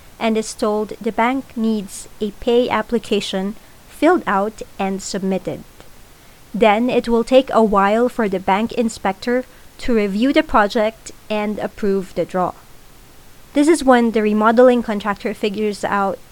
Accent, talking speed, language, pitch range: Filipino, 145 wpm, English, 205-255 Hz